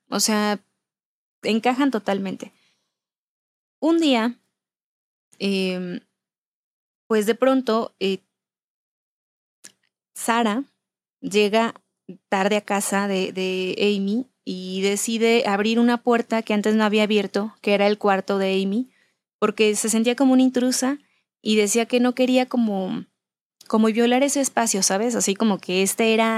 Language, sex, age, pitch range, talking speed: Spanish, female, 20-39, 205-245 Hz, 130 wpm